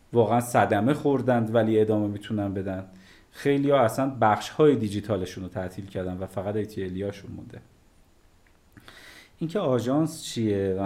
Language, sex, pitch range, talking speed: Persian, male, 95-115 Hz, 140 wpm